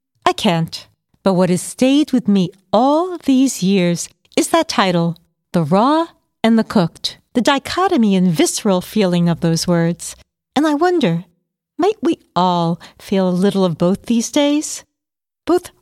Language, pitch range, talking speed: English, 170-260 Hz, 155 wpm